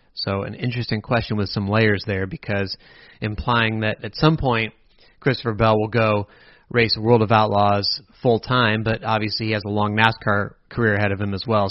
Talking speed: 190 wpm